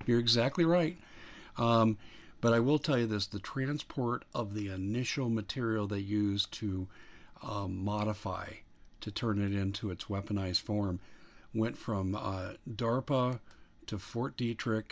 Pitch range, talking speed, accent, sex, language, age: 100-115 Hz, 140 wpm, American, male, English, 50-69